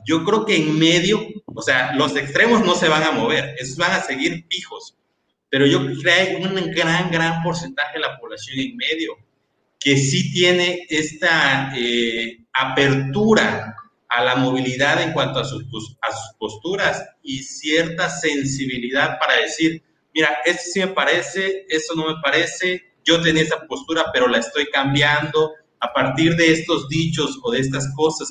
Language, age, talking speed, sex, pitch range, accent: Spanish, 30-49, 170 wpm, male, 140-170 Hz, Mexican